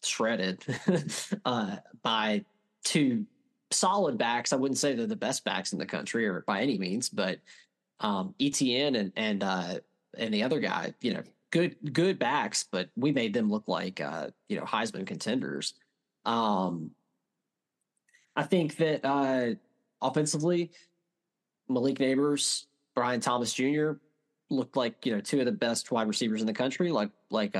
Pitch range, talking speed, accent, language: 110-155 Hz, 155 wpm, American, English